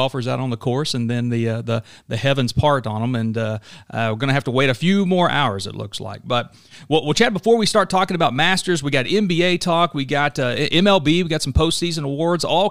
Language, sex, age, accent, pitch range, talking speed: English, male, 40-59, American, 125-170 Hz, 260 wpm